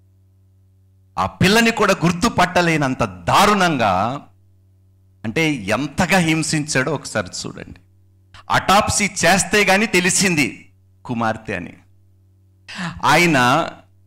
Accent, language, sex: native, Telugu, male